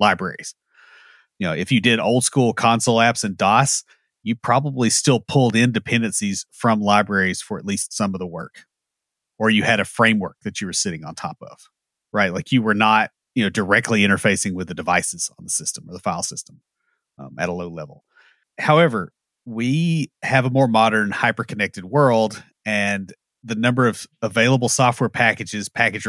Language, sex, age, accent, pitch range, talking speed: English, male, 30-49, American, 105-125 Hz, 180 wpm